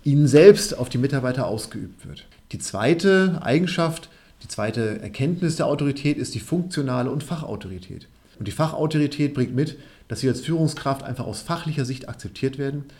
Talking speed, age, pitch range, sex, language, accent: 160 wpm, 40-59, 115-150 Hz, male, German, German